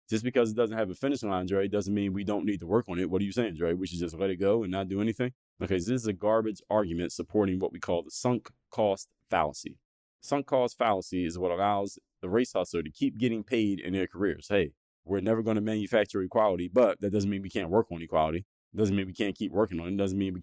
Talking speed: 270 wpm